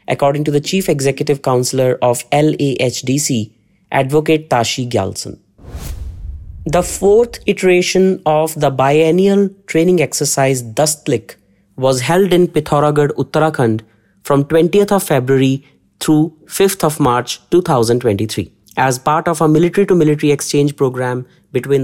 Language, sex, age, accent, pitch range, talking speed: English, male, 30-49, Indian, 120-160 Hz, 120 wpm